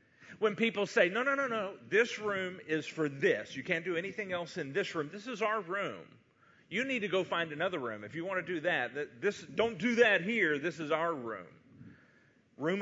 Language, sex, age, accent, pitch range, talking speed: English, male, 40-59, American, 165-220 Hz, 215 wpm